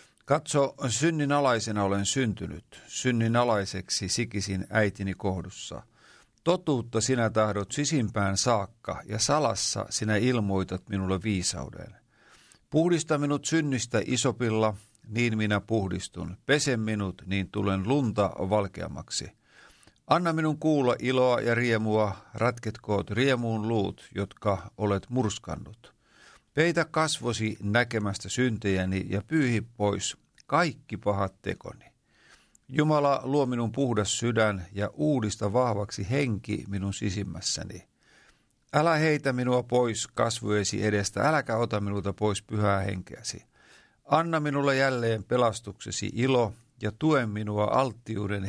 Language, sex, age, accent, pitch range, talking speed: Finnish, male, 50-69, native, 100-130 Hz, 110 wpm